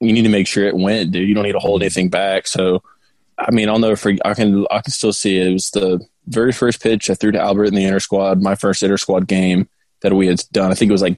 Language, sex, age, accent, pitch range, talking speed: English, male, 20-39, American, 95-105 Hz, 300 wpm